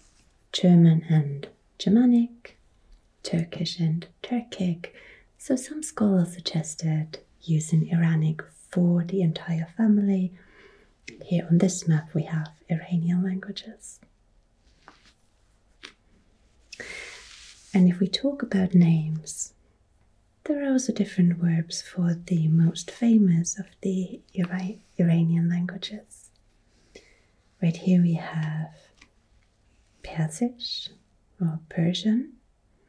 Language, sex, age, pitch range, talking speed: English, female, 30-49, 165-200 Hz, 90 wpm